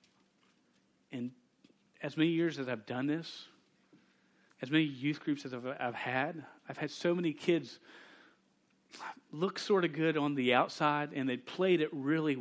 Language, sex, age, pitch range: English, male, 40-59, 125-160 Hz